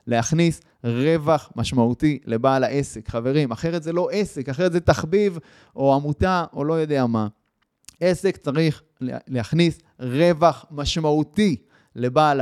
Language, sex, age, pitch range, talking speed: Hebrew, male, 20-39, 145-205 Hz, 120 wpm